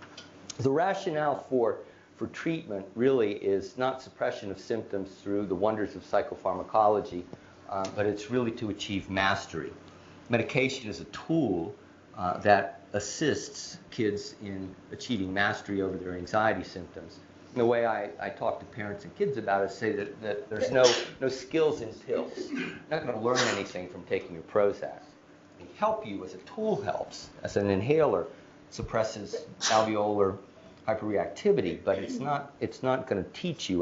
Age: 50-69